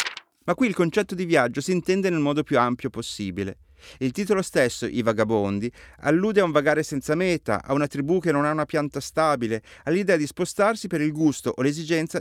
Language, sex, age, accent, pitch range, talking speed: Italian, male, 30-49, native, 125-175 Hz, 200 wpm